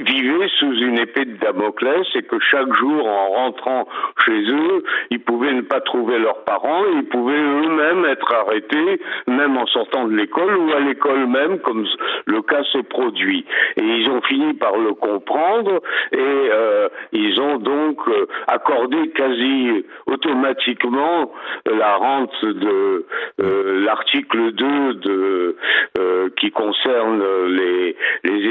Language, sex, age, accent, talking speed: French, male, 60-79, French, 145 wpm